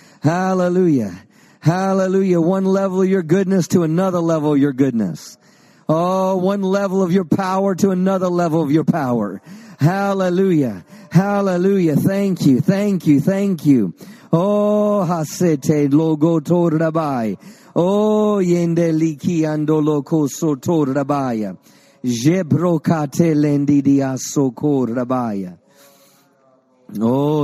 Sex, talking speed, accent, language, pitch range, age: male, 105 wpm, American, English, 125-180 Hz, 50-69